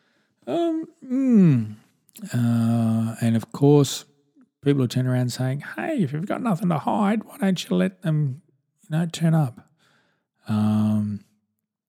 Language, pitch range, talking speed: English, 105-130 Hz, 135 wpm